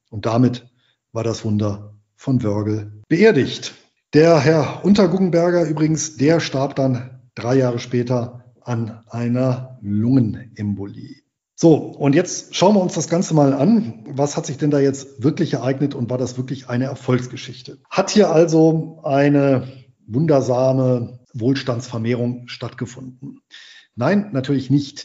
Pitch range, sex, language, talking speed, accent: 125-145 Hz, male, German, 130 wpm, German